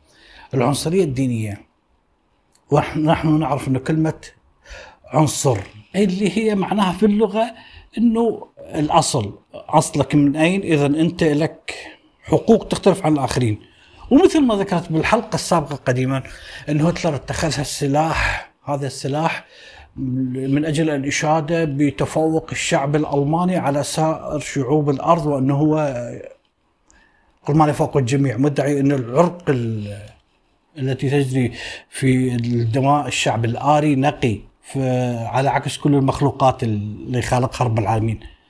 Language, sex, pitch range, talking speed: Arabic, male, 130-155 Hz, 110 wpm